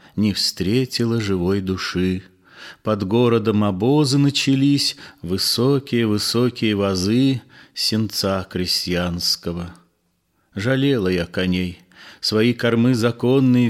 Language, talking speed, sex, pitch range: Russian, 80 wpm, male, 95-125 Hz